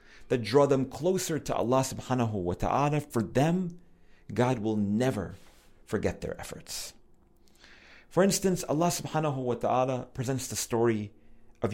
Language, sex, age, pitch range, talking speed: English, male, 40-59, 95-130 Hz, 140 wpm